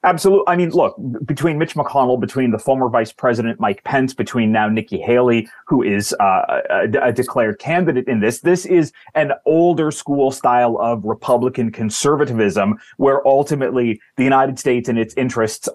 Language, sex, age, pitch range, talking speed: English, male, 30-49, 115-140 Hz, 170 wpm